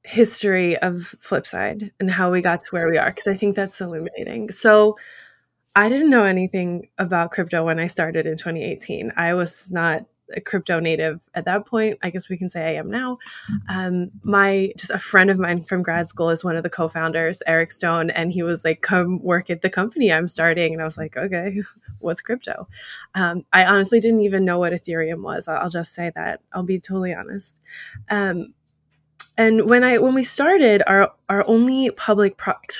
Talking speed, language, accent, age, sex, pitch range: 200 wpm, English, American, 20-39, female, 175-210 Hz